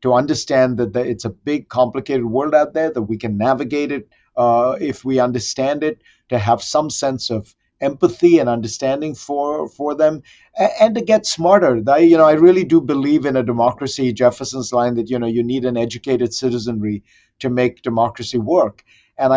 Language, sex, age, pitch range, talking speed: English, male, 50-69, 115-150 Hz, 185 wpm